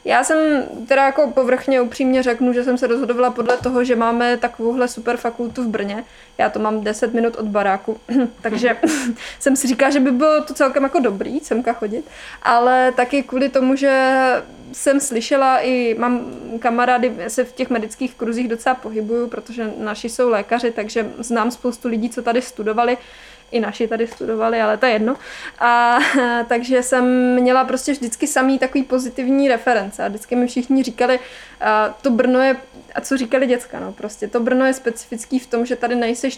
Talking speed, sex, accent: 180 wpm, female, native